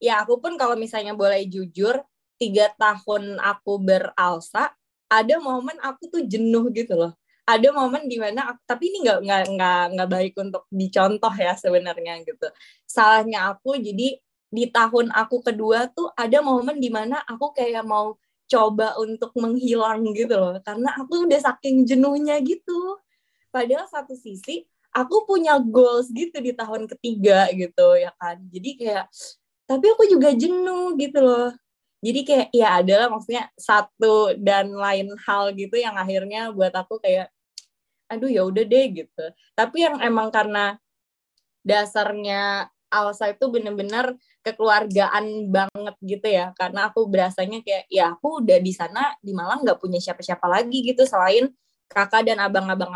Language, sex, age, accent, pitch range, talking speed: Indonesian, female, 20-39, native, 200-265 Hz, 150 wpm